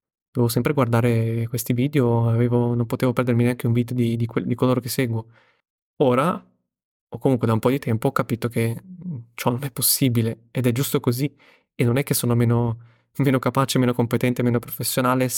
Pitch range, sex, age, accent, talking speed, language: 115-135 Hz, male, 20-39, native, 190 wpm, Italian